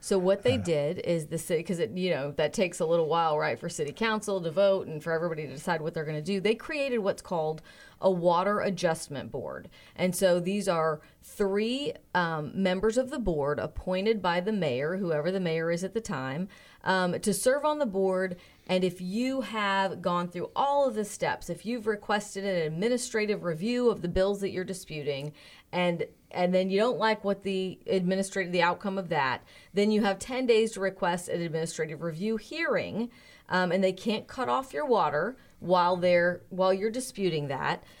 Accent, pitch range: American, 170-210 Hz